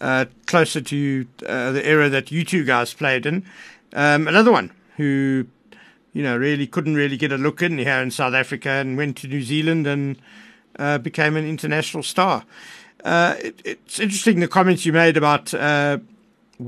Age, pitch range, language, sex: 60-79, 135-170 Hz, English, male